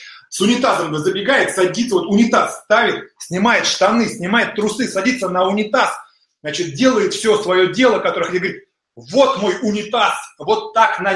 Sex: male